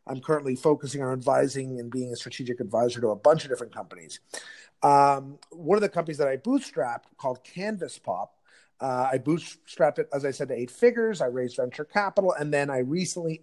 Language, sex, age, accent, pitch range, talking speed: English, male, 30-49, American, 140-185 Hz, 200 wpm